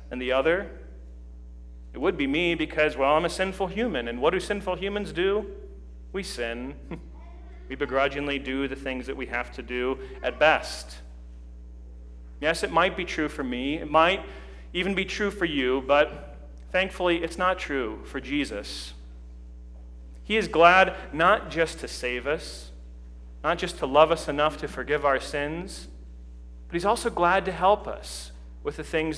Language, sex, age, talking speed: English, male, 40-59, 170 wpm